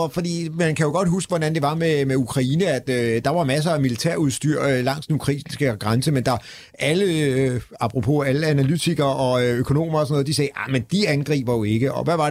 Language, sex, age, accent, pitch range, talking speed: Danish, male, 30-49, native, 120-150 Hz, 225 wpm